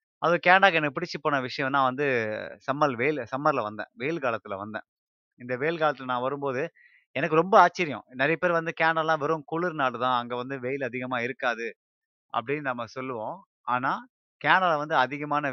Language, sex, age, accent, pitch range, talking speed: Tamil, male, 30-49, native, 120-160 Hz, 160 wpm